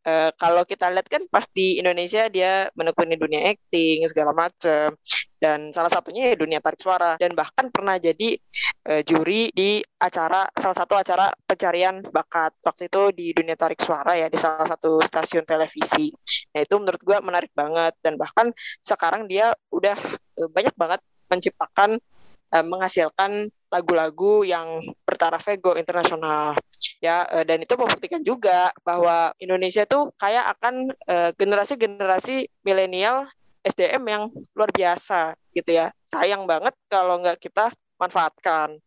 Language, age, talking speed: Indonesian, 20-39, 140 wpm